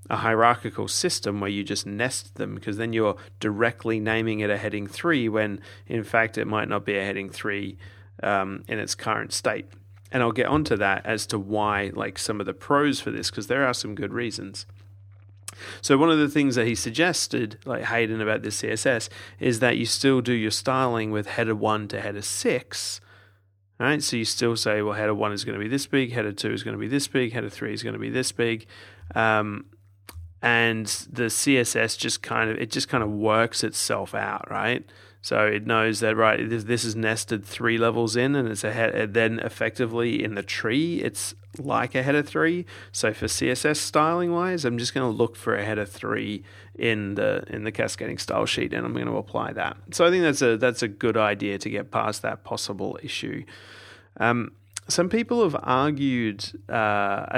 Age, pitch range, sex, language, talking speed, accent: 30-49, 100-120 Hz, male, English, 205 wpm, Australian